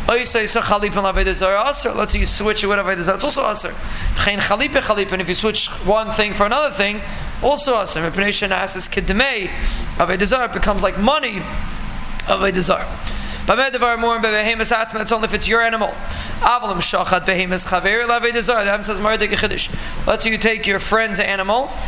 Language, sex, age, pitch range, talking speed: English, male, 30-49, 195-230 Hz, 195 wpm